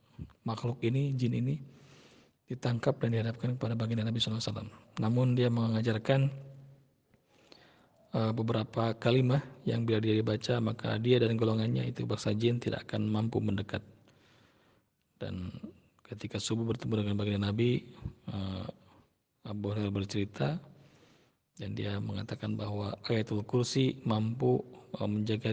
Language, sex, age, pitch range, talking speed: Malay, male, 40-59, 105-120 Hz, 115 wpm